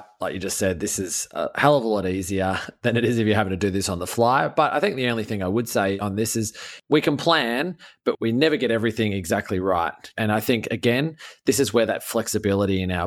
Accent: Australian